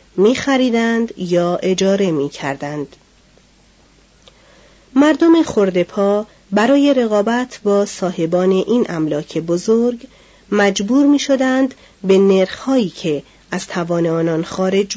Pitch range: 175-230 Hz